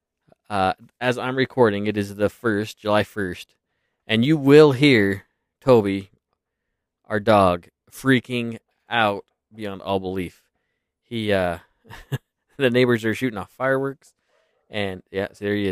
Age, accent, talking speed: 20-39, American, 135 wpm